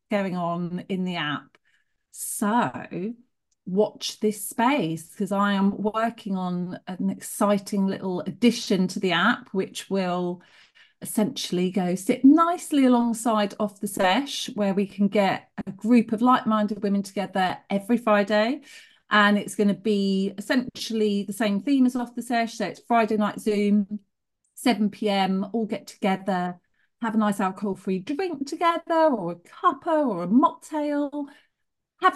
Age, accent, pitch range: 30-49, British, 190-240 Hz